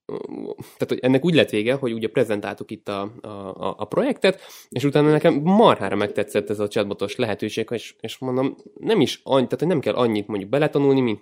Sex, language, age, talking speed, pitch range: male, Hungarian, 20-39, 195 wpm, 100-130 Hz